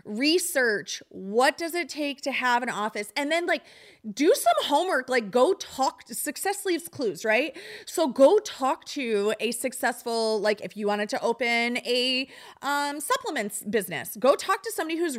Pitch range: 225-290 Hz